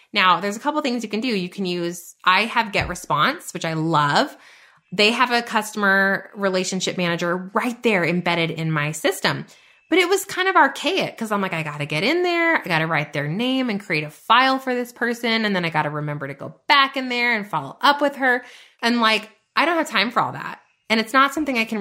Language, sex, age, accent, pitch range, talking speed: English, female, 20-39, American, 180-240 Hz, 245 wpm